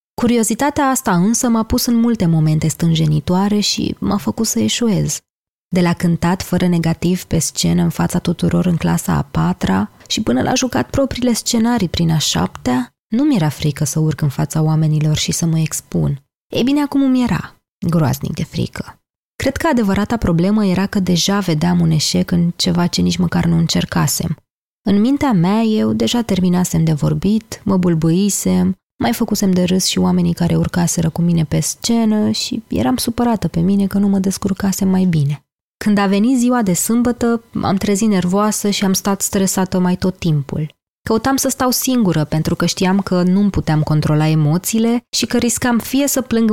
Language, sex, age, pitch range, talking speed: Romanian, female, 20-39, 170-220 Hz, 185 wpm